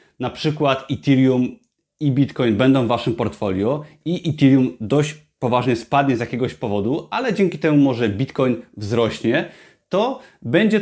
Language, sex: Polish, male